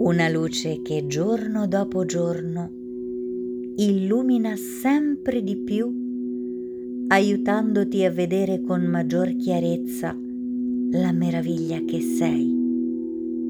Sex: female